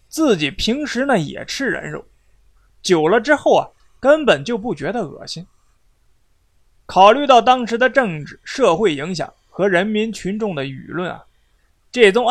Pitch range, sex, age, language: 170-245 Hz, male, 20-39, Chinese